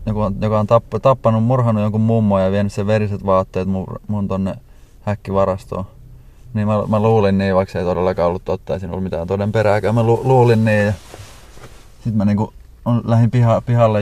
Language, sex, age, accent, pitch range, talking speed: Finnish, male, 30-49, native, 90-105 Hz, 185 wpm